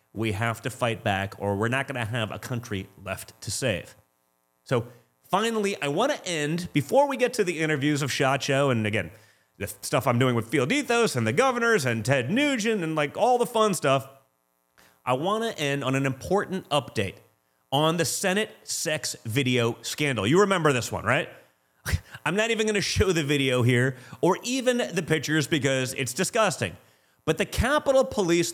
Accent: American